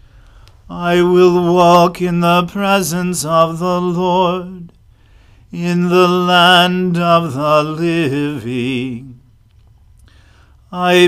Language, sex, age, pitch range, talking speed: English, male, 40-59, 140-180 Hz, 85 wpm